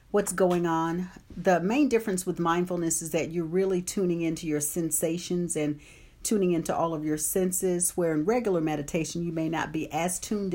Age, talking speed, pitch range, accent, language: 50-69, 190 wpm, 165-195 Hz, American, English